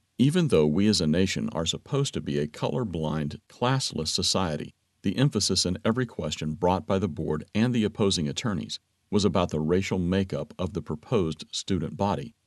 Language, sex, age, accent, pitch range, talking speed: English, male, 50-69, American, 80-110 Hz, 180 wpm